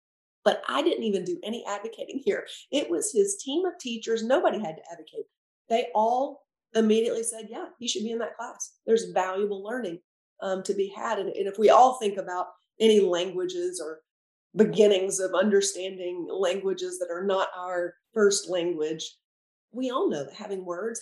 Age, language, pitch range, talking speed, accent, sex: 40-59, English, 180-235 Hz, 175 wpm, American, female